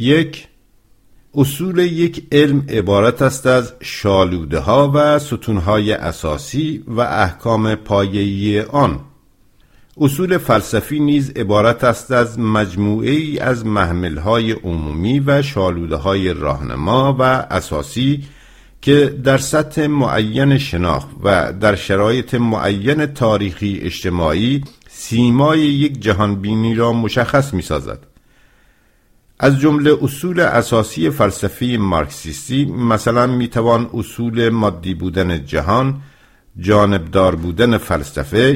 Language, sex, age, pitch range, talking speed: English, male, 50-69, 100-135 Hz, 105 wpm